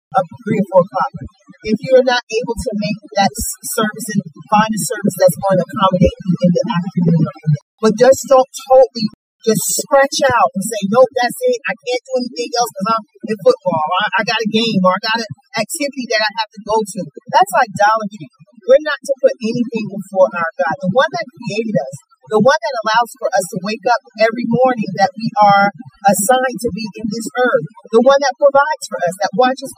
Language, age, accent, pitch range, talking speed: English, 40-59, American, 190-250 Hz, 215 wpm